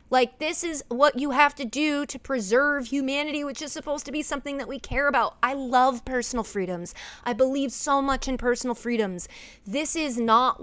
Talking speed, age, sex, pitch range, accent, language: 200 wpm, 30-49, female, 230-280 Hz, American, English